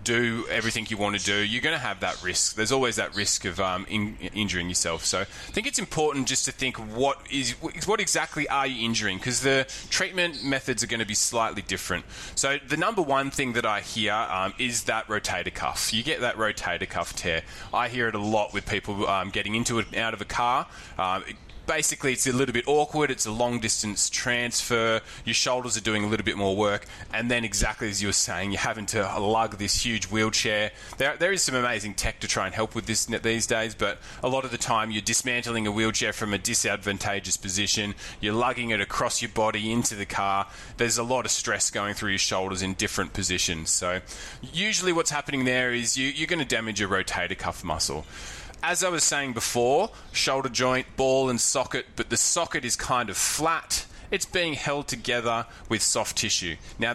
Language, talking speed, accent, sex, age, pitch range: English, 215 wpm, Australian, male, 20-39, 100-130 Hz